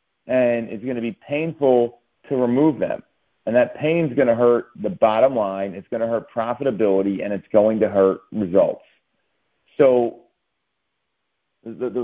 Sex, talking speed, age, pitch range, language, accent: male, 160 wpm, 40-59, 115-140 Hz, English, American